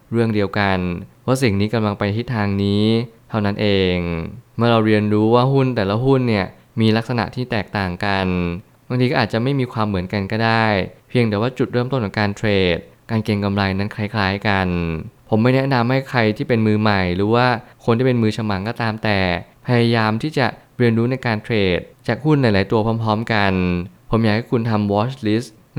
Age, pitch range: 20-39, 100-120 Hz